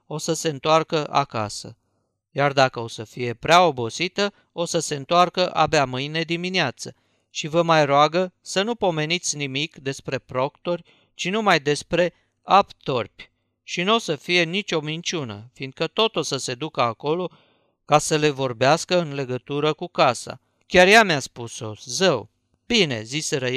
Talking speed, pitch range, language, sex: 160 wpm, 135-175 Hz, Romanian, male